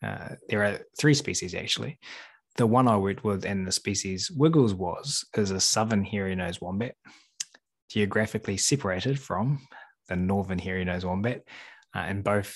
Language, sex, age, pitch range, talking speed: English, male, 20-39, 100-120 Hz, 150 wpm